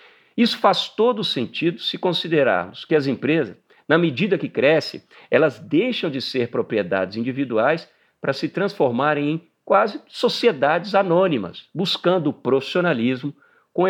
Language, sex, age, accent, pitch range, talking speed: Portuguese, male, 50-69, Brazilian, 130-210 Hz, 130 wpm